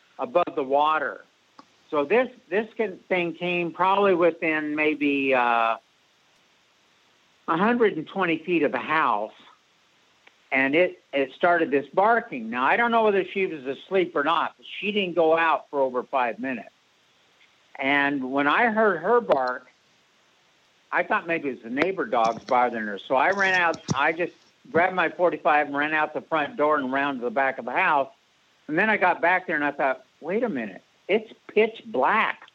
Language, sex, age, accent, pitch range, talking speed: English, male, 60-79, American, 145-200 Hz, 180 wpm